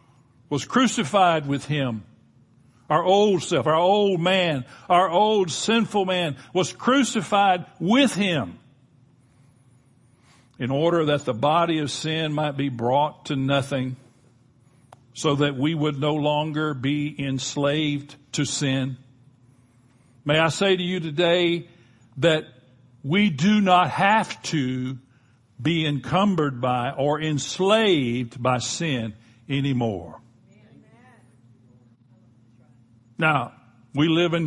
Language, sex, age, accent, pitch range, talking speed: English, male, 60-79, American, 125-185 Hz, 110 wpm